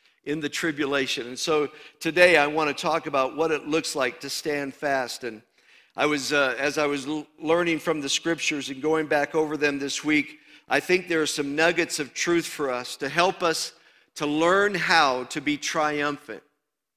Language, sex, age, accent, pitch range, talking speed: English, male, 50-69, American, 140-175 Hz, 185 wpm